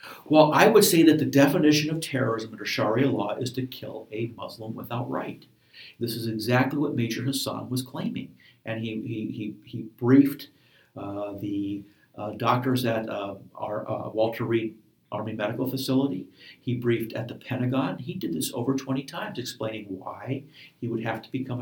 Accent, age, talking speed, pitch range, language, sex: American, 50-69, 180 wpm, 110-135 Hz, English, male